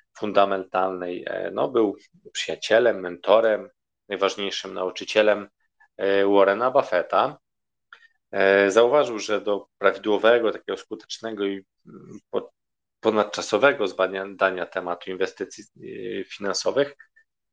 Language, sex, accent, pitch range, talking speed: Polish, male, native, 95-105 Hz, 70 wpm